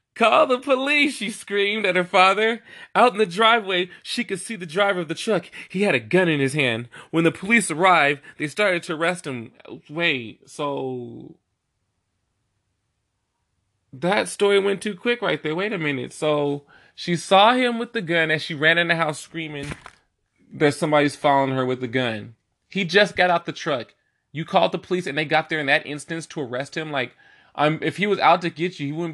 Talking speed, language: 205 wpm, English